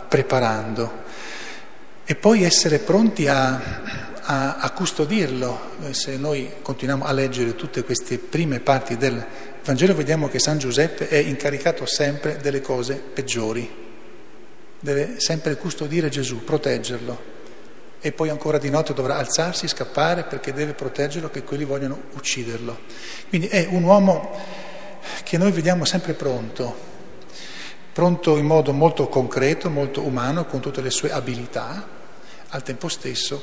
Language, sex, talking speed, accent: Italian, male, 135 wpm, native